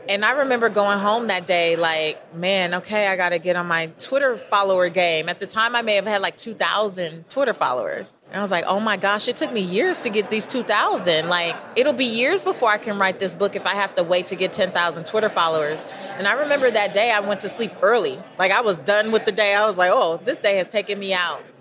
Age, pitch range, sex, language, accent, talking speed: 30-49, 190-245 Hz, female, English, American, 255 wpm